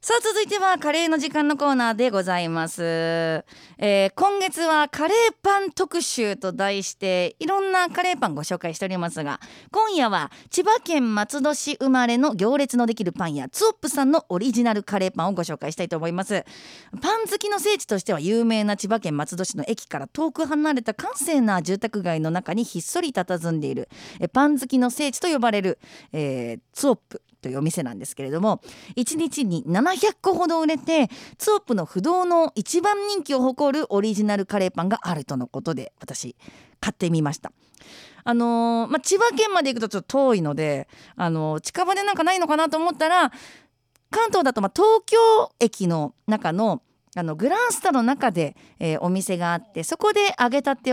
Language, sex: Japanese, female